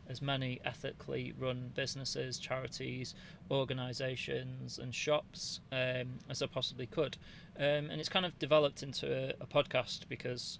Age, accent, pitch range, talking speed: 30-49, British, 125-135 Hz, 140 wpm